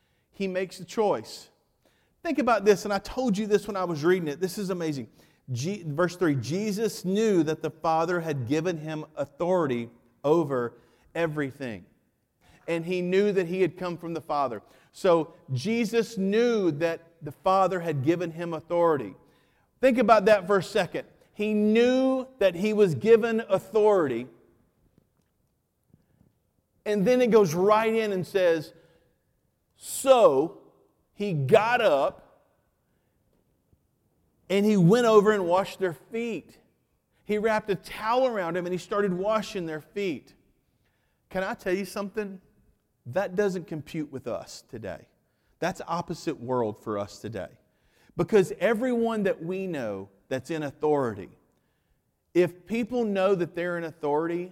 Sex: male